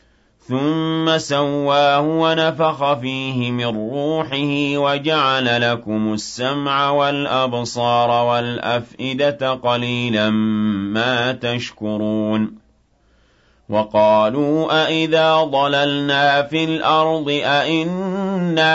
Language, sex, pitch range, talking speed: Arabic, male, 110-145 Hz, 65 wpm